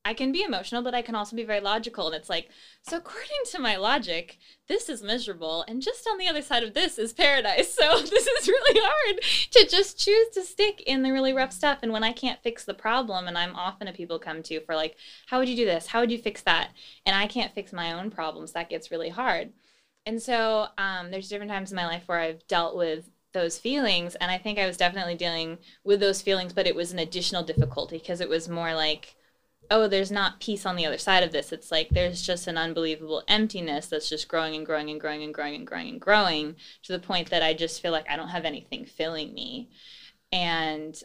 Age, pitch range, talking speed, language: 20-39, 165-225 Hz, 240 wpm, English